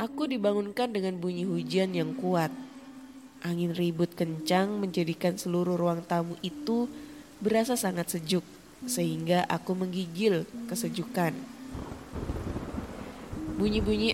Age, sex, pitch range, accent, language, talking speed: 20-39, female, 175-220 Hz, native, Indonesian, 100 wpm